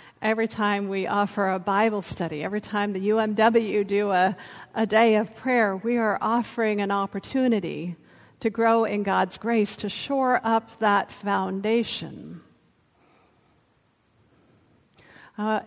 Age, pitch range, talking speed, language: 50-69, 200-230 Hz, 125 wpm, English